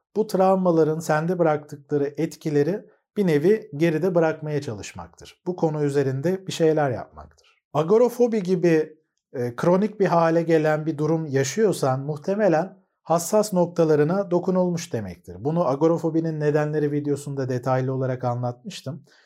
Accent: native